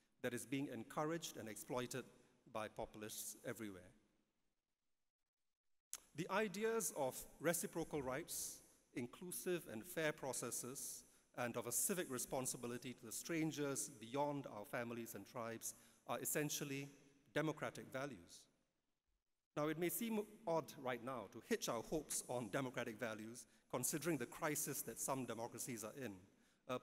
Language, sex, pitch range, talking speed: English, male, 120-150 Hz, 130 wpm